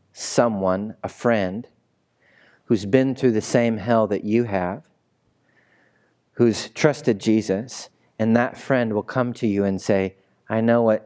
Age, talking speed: 40-59, 145 wpm